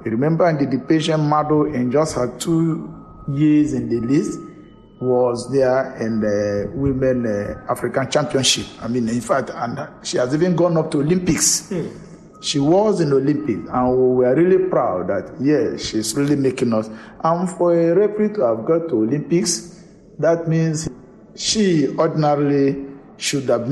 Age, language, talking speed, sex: 50-69, English, 160 wpm, male